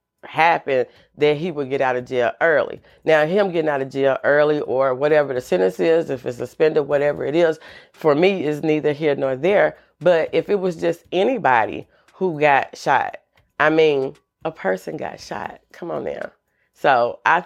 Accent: American